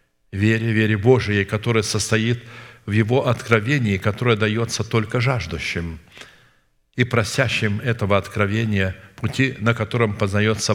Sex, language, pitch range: male, Russian, 105-120 Hz